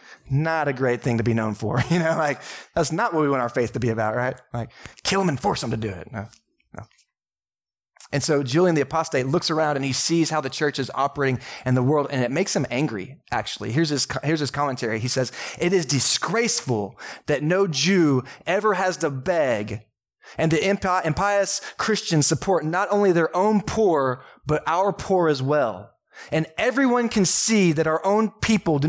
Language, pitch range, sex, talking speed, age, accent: English, 135-190 Hz, male, 205 wpm, 20-39, American